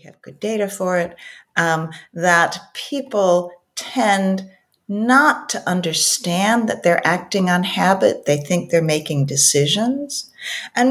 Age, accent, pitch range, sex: 50-69, American, 160-230 Hz, female